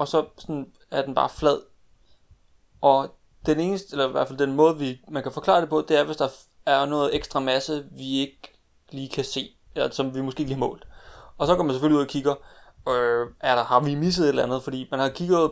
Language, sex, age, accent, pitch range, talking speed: Danish, male, 30-49, native, 130-155 Hz, 245 wpm